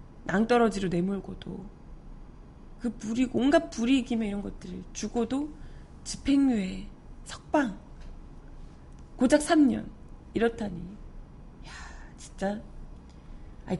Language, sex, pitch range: Korean, female, 200-295 Hz